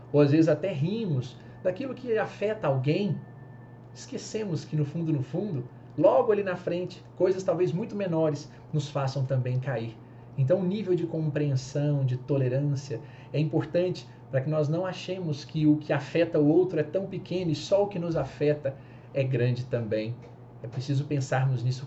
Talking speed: 175 wpm